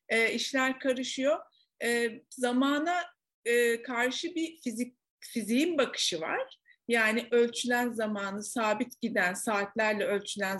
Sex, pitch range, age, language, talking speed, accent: female, 215-280 Hz, 50-69, Turkish, 110 wpm, native